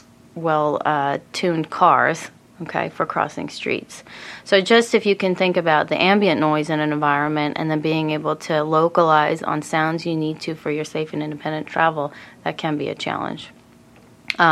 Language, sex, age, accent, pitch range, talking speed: English, female, 30-49, American, 155-180 Hz, 175 wpm